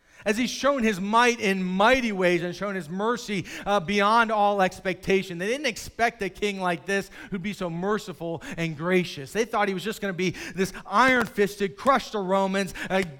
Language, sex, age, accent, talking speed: English, male, 40-59, American, 195 wpm